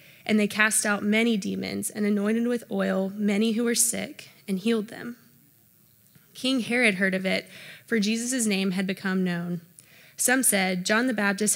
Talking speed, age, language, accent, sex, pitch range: 170 wpm, 20-39, English, American, female, 185-225 Hz